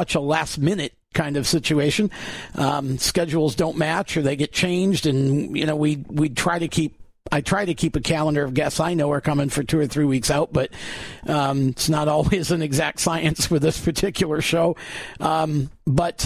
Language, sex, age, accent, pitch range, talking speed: English, male, 50-69, American, 155-200 Hz, 200 wpm